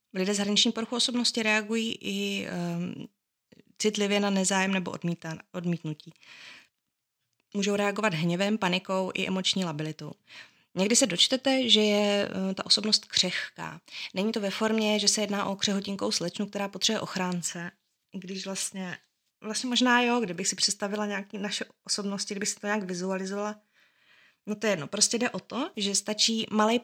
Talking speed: 155 wpm